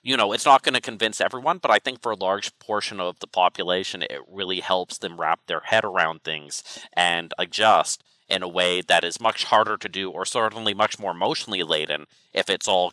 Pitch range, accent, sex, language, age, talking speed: 85-100 Hz, American, male, English, 30-49, 220 wpm